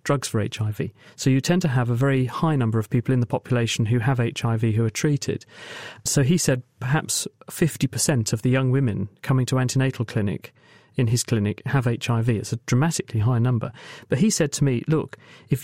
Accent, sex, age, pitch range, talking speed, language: British, male, 40-59, 115-145 Hz, 205 wpm, English